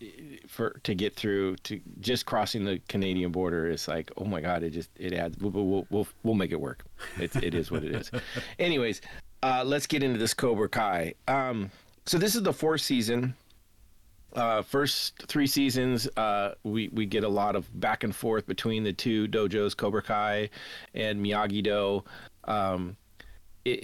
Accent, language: American, English